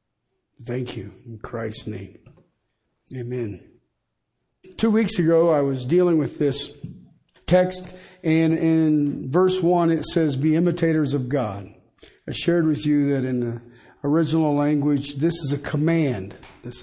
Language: English